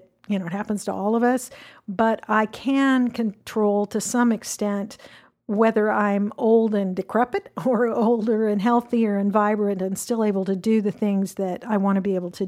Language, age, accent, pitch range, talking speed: English, 50-69, American, 195-225 Hz, 190 wpm